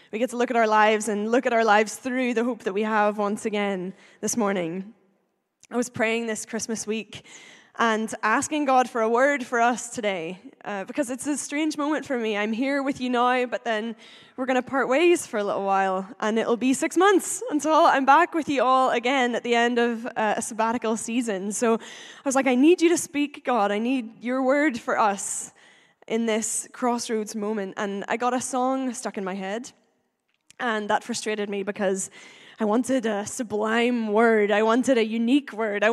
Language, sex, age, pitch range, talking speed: English, female, 10-29, 215-260 Hz, 210 wpm